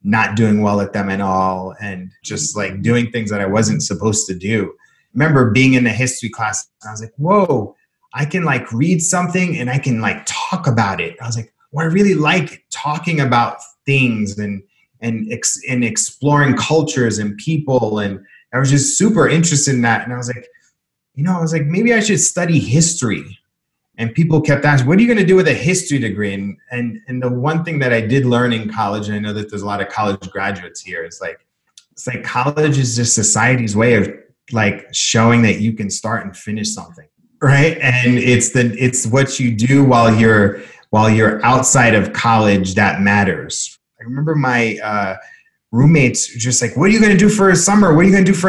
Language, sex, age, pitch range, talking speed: English, male, 30-49, 110-150 Hz, 215 wpm